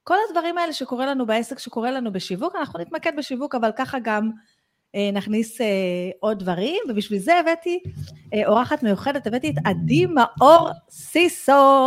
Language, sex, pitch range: Hebrew, female, 220-280 Hz